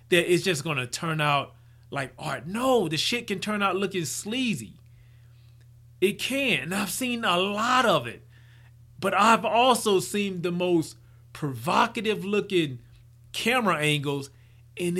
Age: 30-49